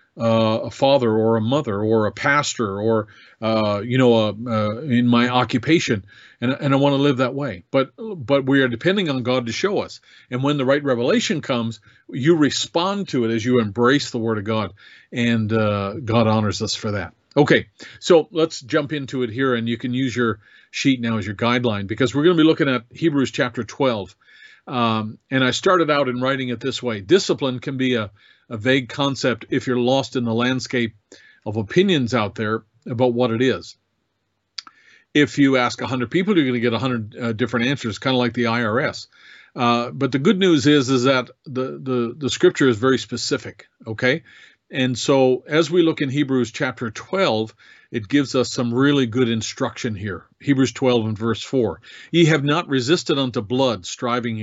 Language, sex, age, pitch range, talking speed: English, male, 50-69, 115-140 Hz, 200 wpm